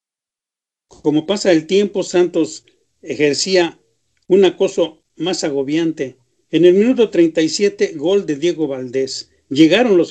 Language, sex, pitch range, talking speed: Spanish, male, 150-195 Hz, 120 wpm